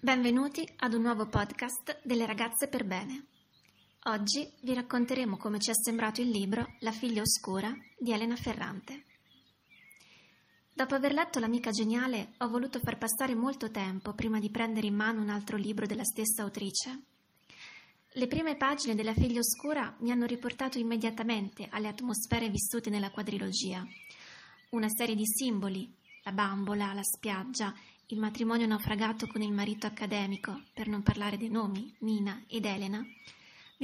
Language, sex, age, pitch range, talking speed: Italian, female, 20-39, 210-250 Hz, 150 wpm